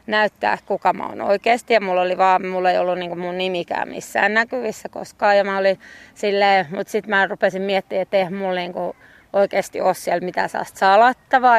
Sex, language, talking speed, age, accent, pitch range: female, Finnish, 185 wpm, 30-49, native, 185-215 Hz